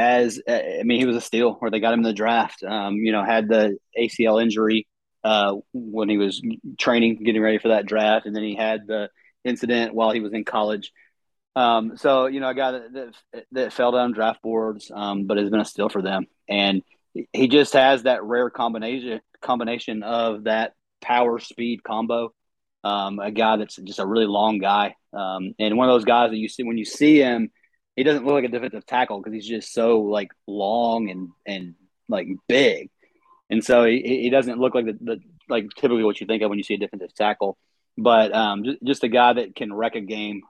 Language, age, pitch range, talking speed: English, 30-49, 105-125 Hz, 215 wpm